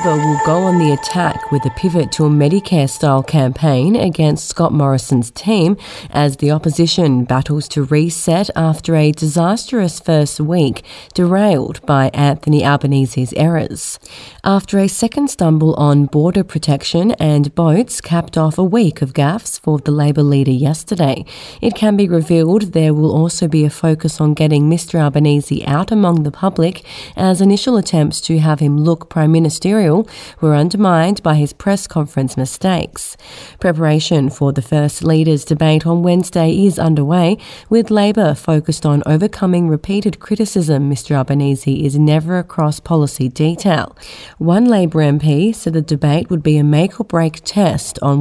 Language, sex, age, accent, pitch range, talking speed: English, female, 30-49, Australian, 145-175 Hz, 155 wpm